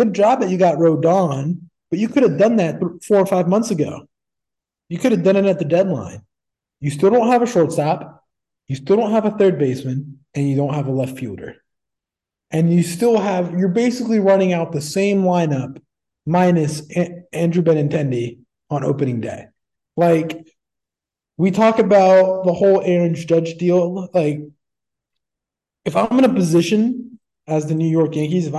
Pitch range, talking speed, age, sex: 155-205 Hz, 170 wpm, 20-39, male